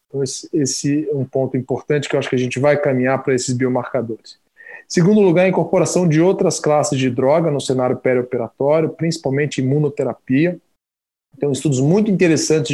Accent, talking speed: Brazilian, 165 wpm